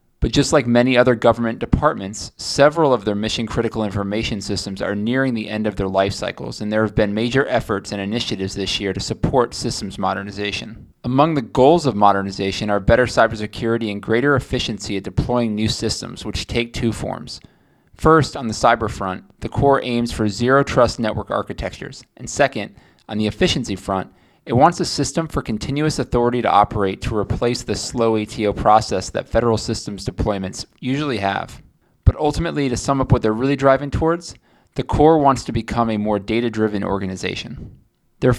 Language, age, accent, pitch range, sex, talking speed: English, 20-39, American, 105-125 Hz, male, 180 wpm